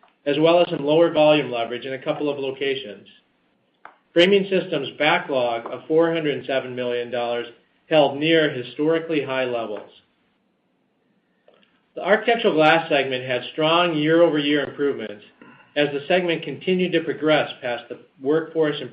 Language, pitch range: English, 125-165 Hz